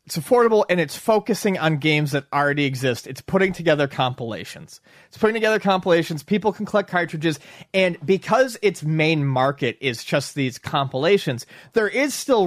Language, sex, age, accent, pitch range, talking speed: English, male, 30-49, American, 130-170 Hz, 165 wpm